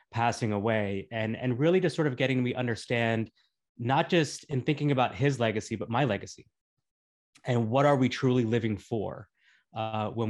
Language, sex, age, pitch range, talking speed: English, male, 20-39, 105-125 Hz, 175 wpm